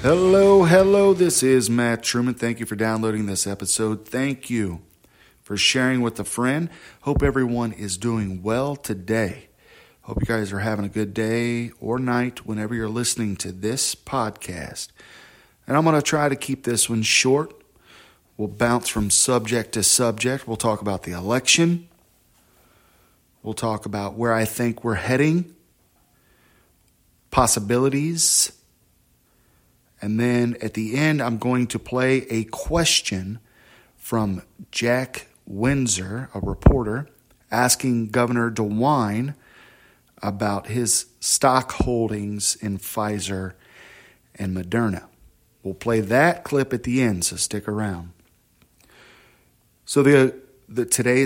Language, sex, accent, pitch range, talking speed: English, male, American, 105-130 Hz, 130 wpm